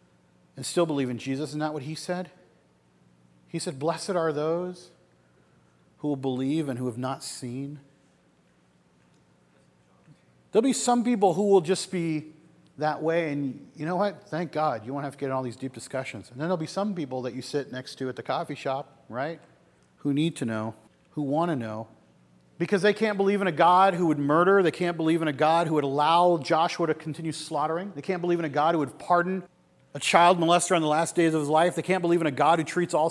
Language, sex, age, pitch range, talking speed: English, male, 40-59, 130-170 Hz, 225 wpm